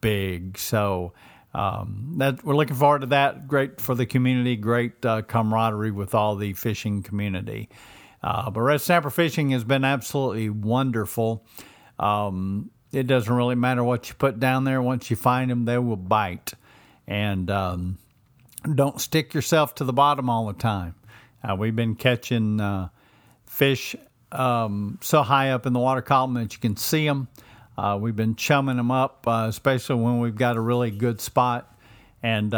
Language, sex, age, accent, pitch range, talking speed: English, male, 50-69, American, 105-125 Hz, 170 wpm